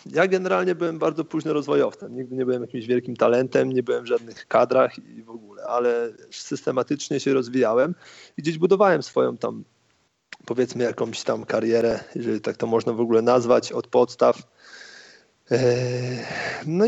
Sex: male